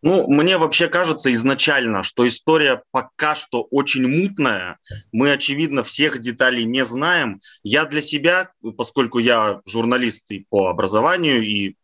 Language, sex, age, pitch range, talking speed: Russian, male, 20-39, 115-150 Hz, 135 wpm